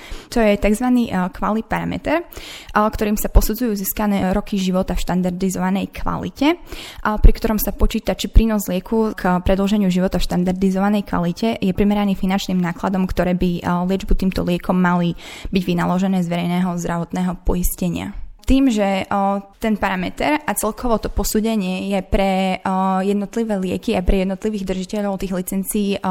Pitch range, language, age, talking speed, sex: 185-205 Hz, Slovak, 20-39, 140 wpm, female